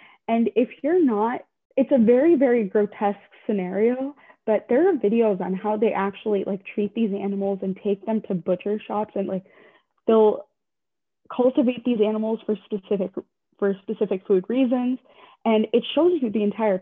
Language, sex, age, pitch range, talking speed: English, female, 20-39, 200-235 Hz, 165 wpm